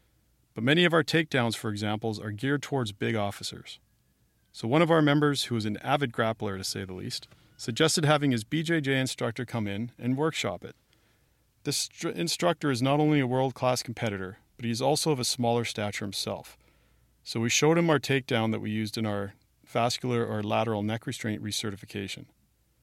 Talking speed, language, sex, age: 185 wpm, English, male, 40-59